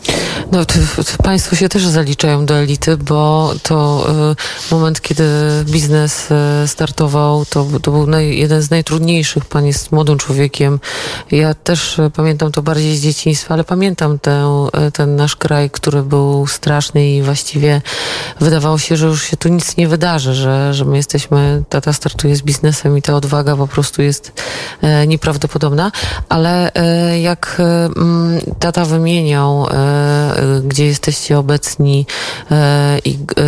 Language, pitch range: Polish, 145-160 Hz